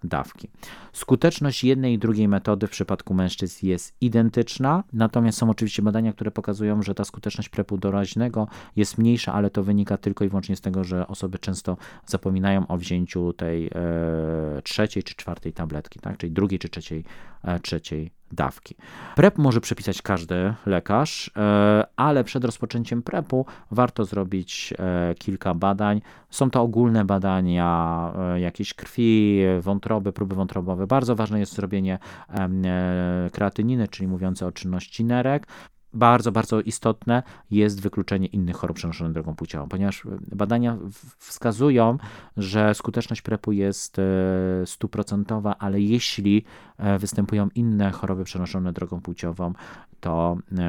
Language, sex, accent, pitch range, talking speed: Polish, male, native, 90-110 Hz, 135 wpm